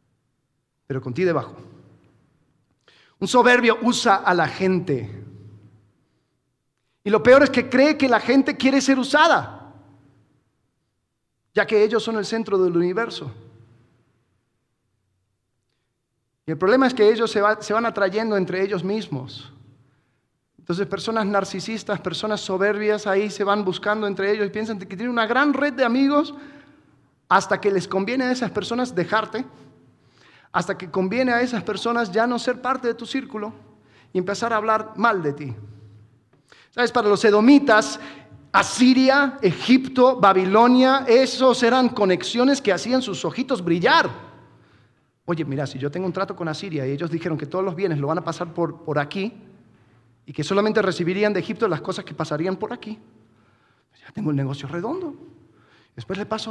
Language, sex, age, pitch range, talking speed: Spanish, male, 40-59, 135-225 Hz, 160 wpm